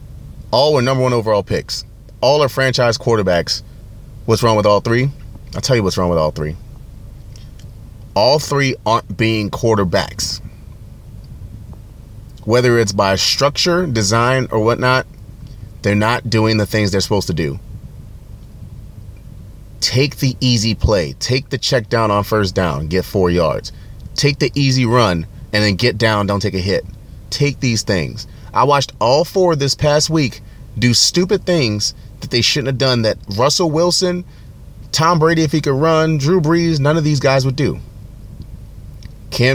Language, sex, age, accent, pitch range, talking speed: English, male, 30-49, American, 105-135 Hz, 160 wpm